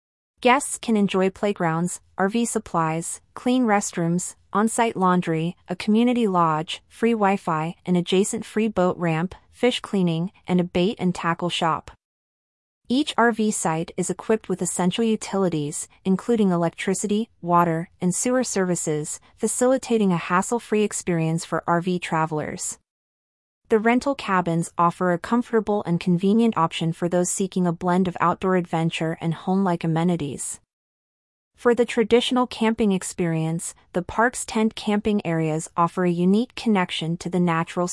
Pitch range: 170-215 Hz